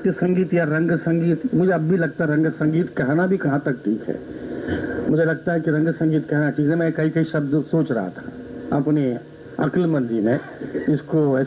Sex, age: male, 70-89